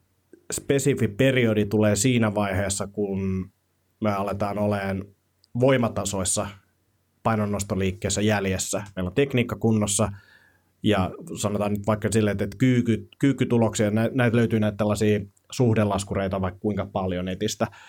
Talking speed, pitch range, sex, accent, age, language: 105 wpm, 95-110 Hz, male, native, 30-49, Finnish